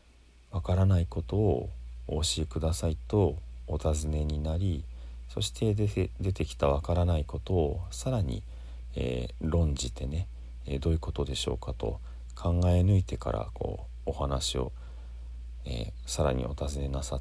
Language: Japanese